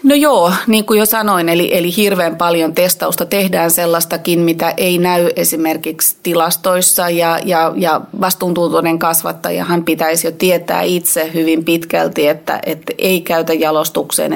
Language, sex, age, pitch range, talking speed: Finnish, female, 30-49, 165-180 Hz, 145 wpm